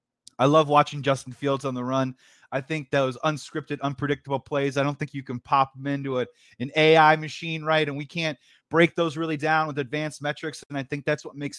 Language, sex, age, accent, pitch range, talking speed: English, male, 30-49, American, 130-160 Hz, 220 wpm